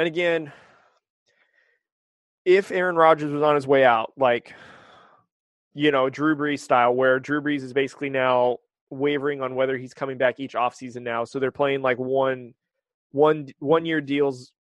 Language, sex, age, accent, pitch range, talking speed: English, male, 20-39, American, 130-150 Hz, 165 wpm